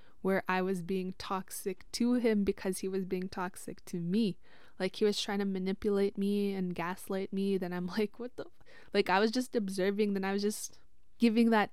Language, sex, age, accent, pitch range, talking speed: English, female, 20-39, American, 180-210 Hz, 205 wpm